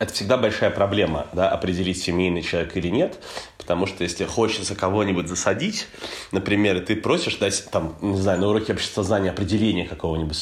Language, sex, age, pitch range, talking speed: Russian, male, 20-39, 90-115 Hz, 175 wpm